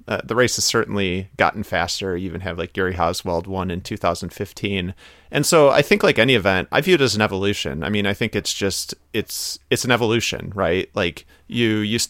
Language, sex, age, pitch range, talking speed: English, male, 30-49, 90-110 Hz, 215 wpm